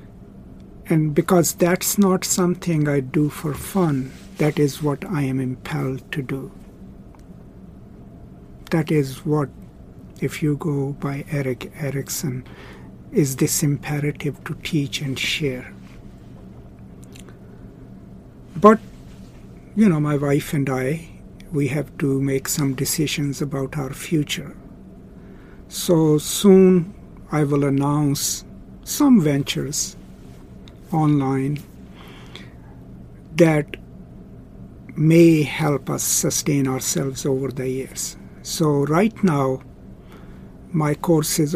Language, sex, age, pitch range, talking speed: English, male, 60-79, 130-155 Hz, 105 wpm